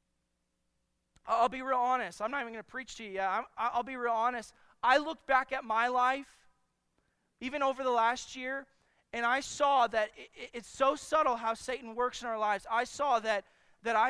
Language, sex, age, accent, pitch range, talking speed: English, male, 20-39, American, 170-250 Hz, 195 wpm